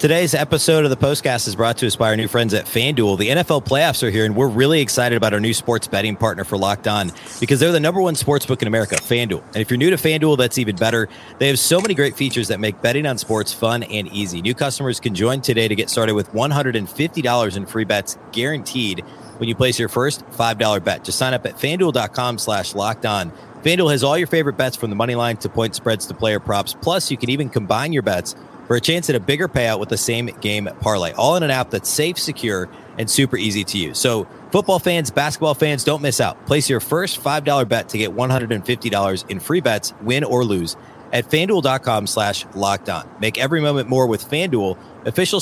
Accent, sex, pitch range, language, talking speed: American, male, 110-145 Hz, English, 240 wpm